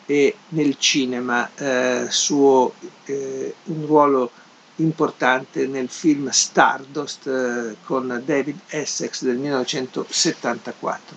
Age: 50-69